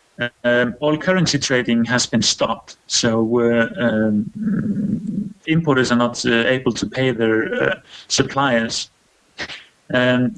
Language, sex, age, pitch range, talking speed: English, male, 30-49, 115-140 Hz, 120 wpm